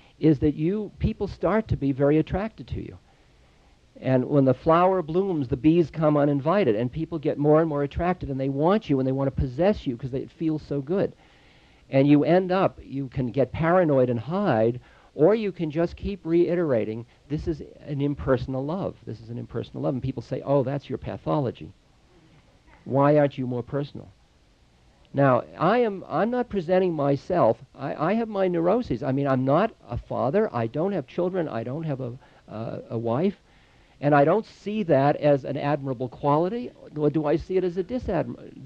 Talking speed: 195 wpm